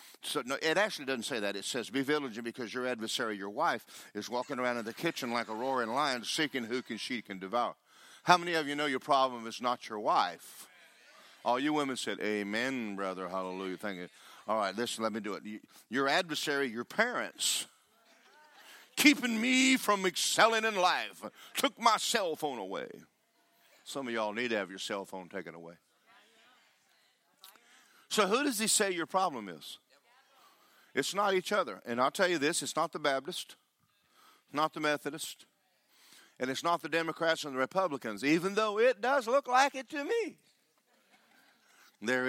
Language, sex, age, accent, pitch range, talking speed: English, male, 50-69, American, 110-155 Hz, 180 wpm